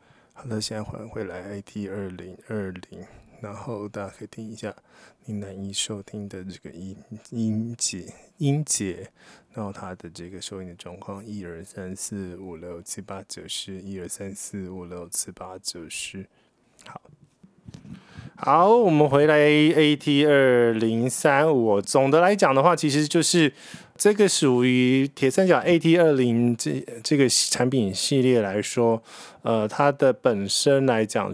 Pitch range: 105-135 Hz